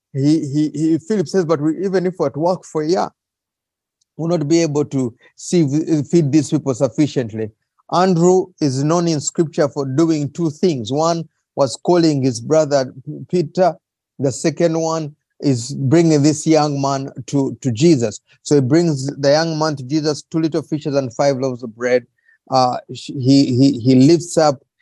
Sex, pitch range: male, 125-155 Hz